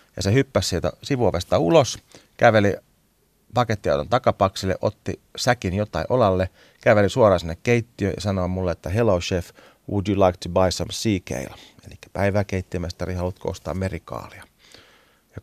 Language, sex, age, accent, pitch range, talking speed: Finnish, male, 30-49, native, 95-115 Hz, 150 wpm